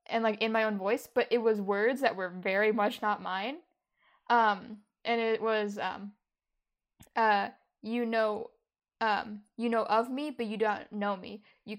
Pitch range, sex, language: 205-235 Hz, female, English